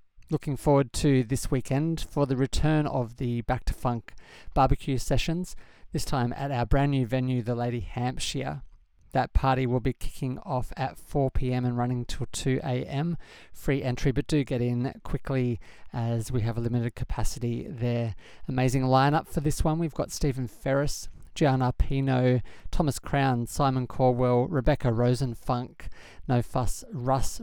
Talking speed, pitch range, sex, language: 160 wpm, 120-140 Hz, male, English